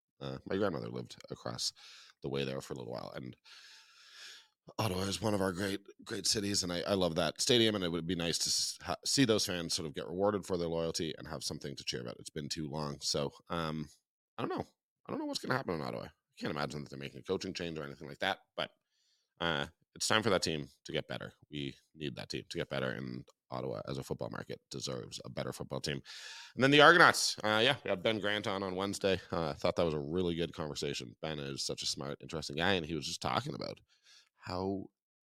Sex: male